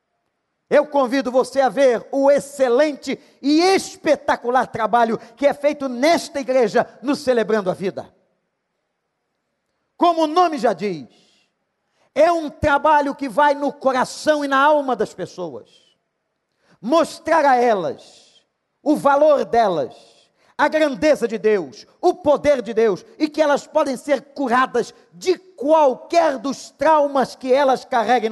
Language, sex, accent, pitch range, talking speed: Portuguese, male, Brazilian, 230-305 Hz, 135 wpm